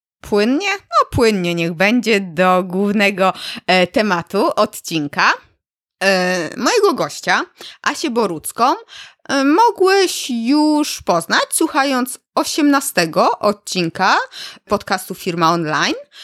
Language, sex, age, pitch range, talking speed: Polish, female, 20-39, 180-270 Hz, 80 wpm